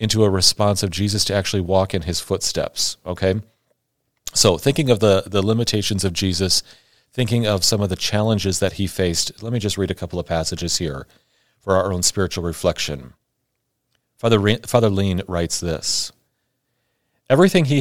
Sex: male